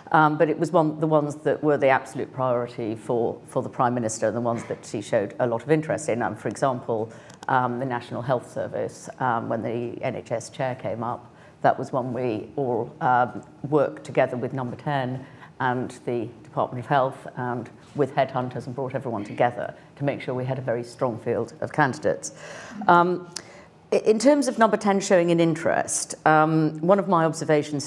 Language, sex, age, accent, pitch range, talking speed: English, female, 50-69, British, 125-160 Hz, 190 wpm